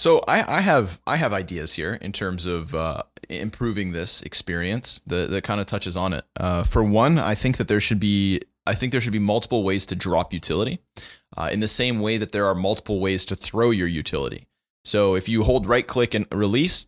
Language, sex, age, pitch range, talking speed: English, male, 20-39, 95-125 Hz, 220 wpm